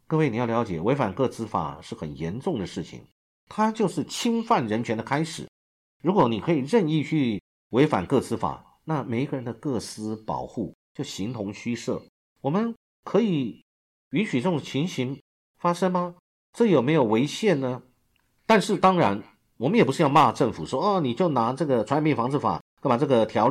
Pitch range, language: 100-165 Hz, Chinese